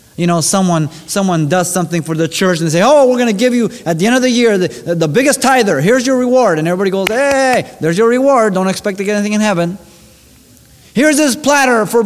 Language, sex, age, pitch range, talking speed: English, male, 30-49, 135-210 Hz, 245 wpm